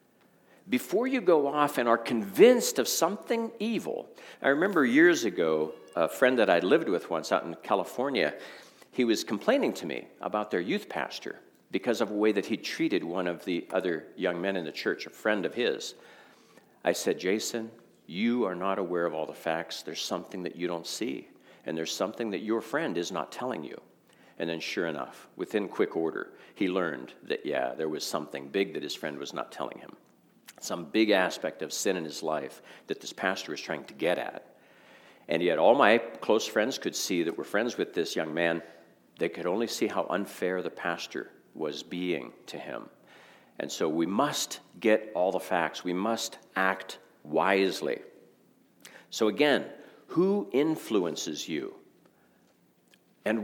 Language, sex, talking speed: English, male, 185 wpm